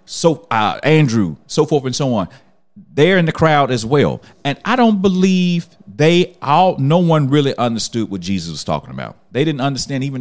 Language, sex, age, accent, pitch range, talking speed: English, male, 40-59, American, 95-135 Hz, 195 wpm